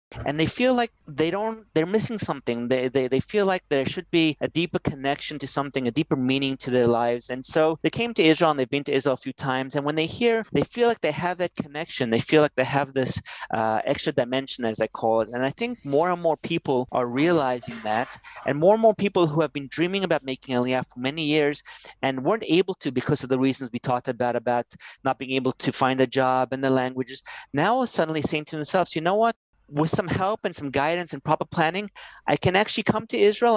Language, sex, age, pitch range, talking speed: English, male, 30-49, 130-175 Hz, 235 wpm